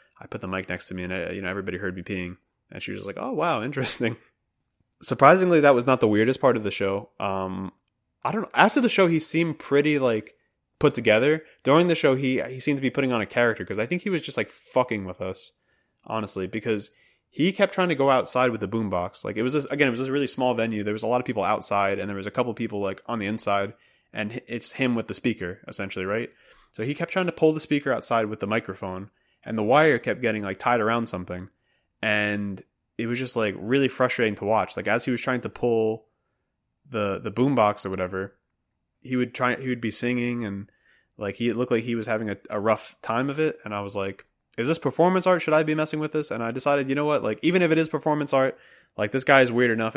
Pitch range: 105-135 Hz